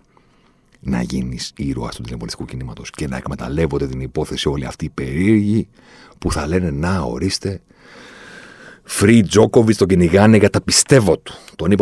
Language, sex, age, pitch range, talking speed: Greek, male, 40-59, 70-95 Hz, 150 wpm